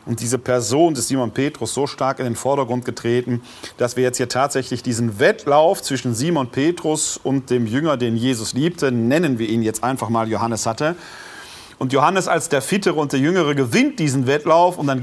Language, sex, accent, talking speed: German, male, German, 195 wpm